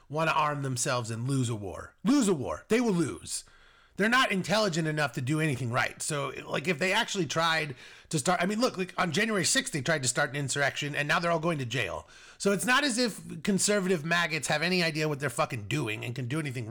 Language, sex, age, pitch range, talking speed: English, male, 30-49, 135-190 Hz, 245 wpm